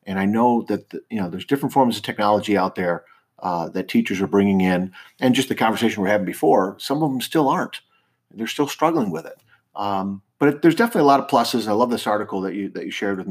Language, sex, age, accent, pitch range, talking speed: English, male, 40-59, American, 100-135 Hz, 255 wpm